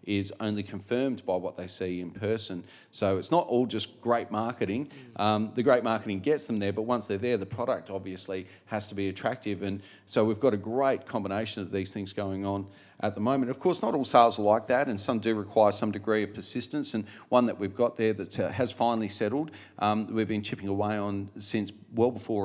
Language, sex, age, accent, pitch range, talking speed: English, male, 40-59, Australian, 100-115 Hz, 230 wpm